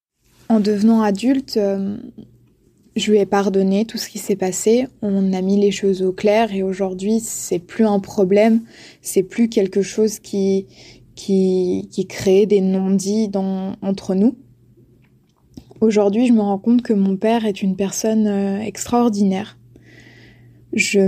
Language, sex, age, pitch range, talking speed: French, female, 20-39, 195-220 Hz, 140 wpm